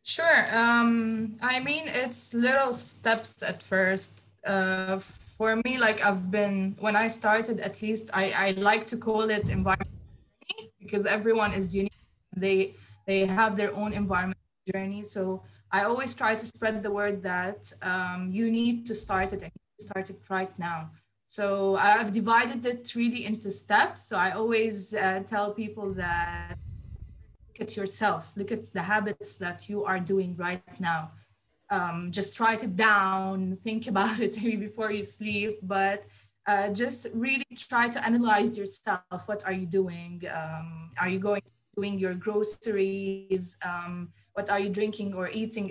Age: 20-39